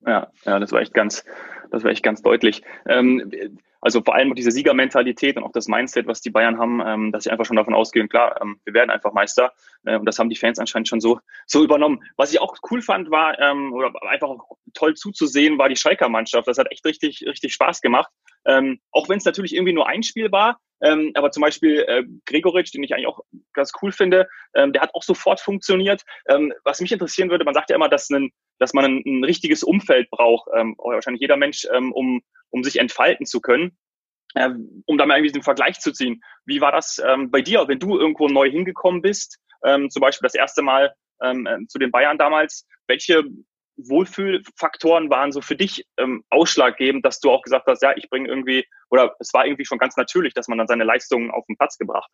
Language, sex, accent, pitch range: German, male, German, 130-195 Hz